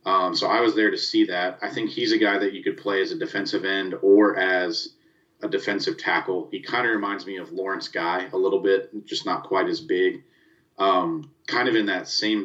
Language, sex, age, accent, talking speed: English, male, 30-49, American, 230 wpm